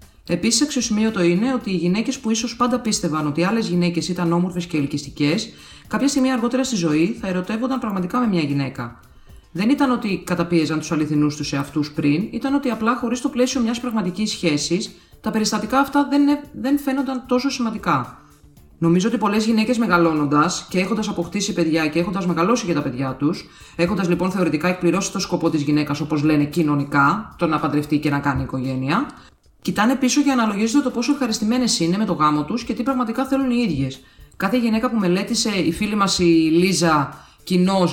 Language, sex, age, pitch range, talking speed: Greek, female, 30-49, 165-240 Hz, 185 wpm